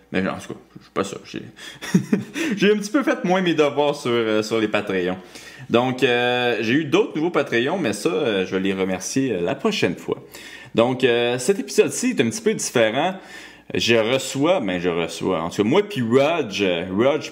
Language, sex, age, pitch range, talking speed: French, male, 20-39, 90-120 Hz, 210 wpm